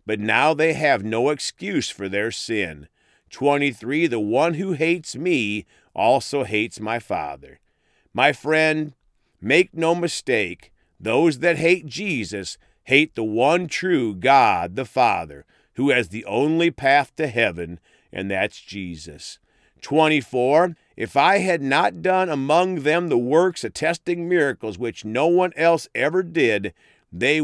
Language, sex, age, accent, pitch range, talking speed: English, male, 50-69, American, 105-165 Hz, 140 wpm